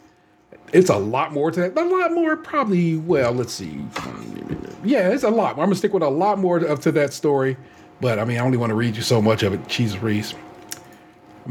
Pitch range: 125-170 Hz